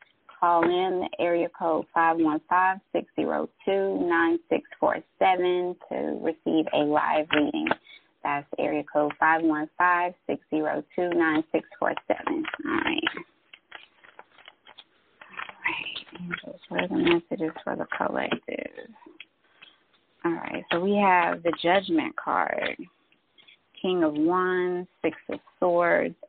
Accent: American